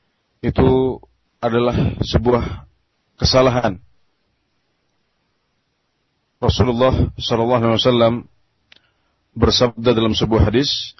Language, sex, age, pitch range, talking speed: Indonesian, male, 30-49, 110-125 Hz, 55 wpm